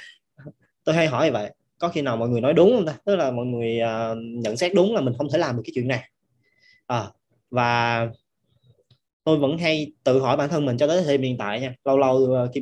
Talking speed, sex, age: 245 wpm, male, 20-39